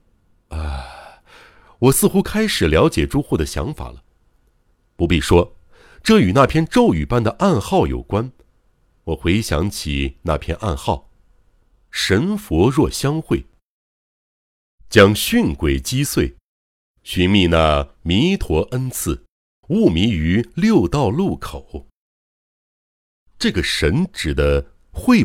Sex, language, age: male, Chinese, 60-79